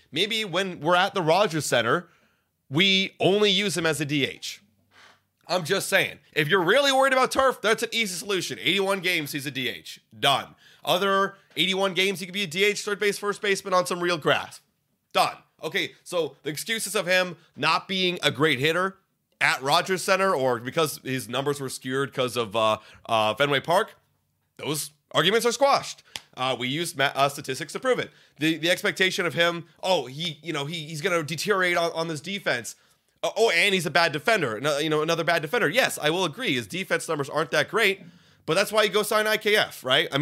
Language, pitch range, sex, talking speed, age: English, 140-195 Hz, male, 205 wpm, 30-49